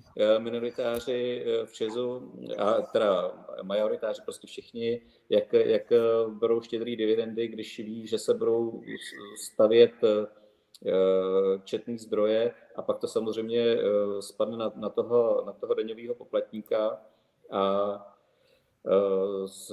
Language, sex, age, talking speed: Czech, male, 40-59, 105 wpm